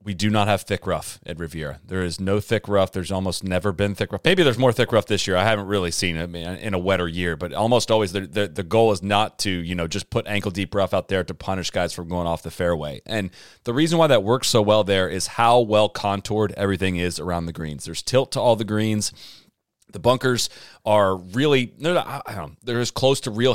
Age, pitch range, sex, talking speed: 30-49, 95-115 Hz, male, 240 wpm